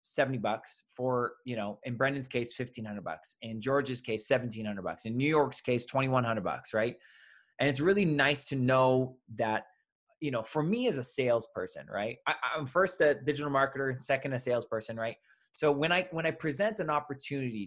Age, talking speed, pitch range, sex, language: 20-39, 190 wpm, 120-150 Hz, male, English